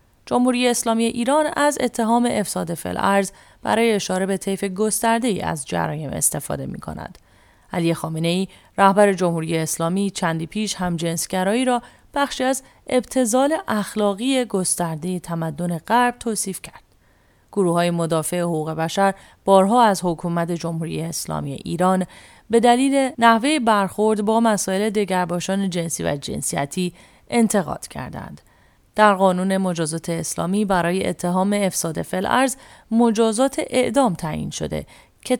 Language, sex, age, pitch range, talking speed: English, female, 30-49, 170-230 Hz, 125 wpm